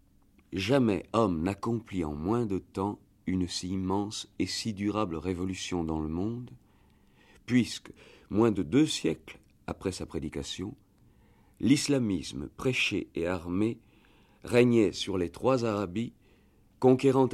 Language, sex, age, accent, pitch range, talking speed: French, male, 50-69, French, 90-115 Hz, 120 wpm